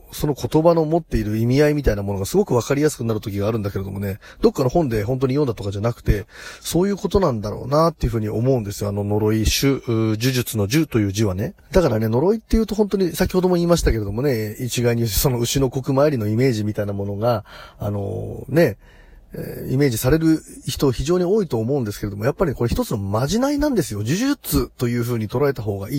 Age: 30-49